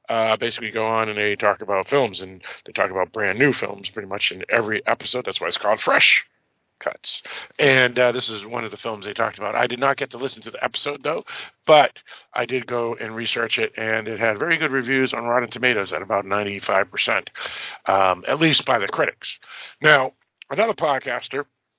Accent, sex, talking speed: American, male, 210 wpm